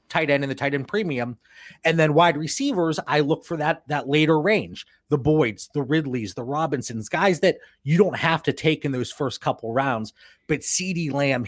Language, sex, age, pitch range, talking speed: English, male, 30-49, 135-170 Hz, 205 wpm